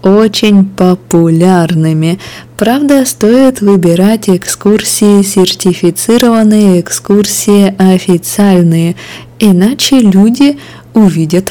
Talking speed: 65 wpm